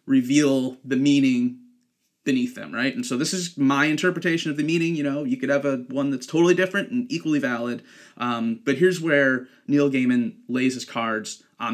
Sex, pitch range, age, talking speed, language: male, 130-180 Hz, 30-49, 195 wpm, English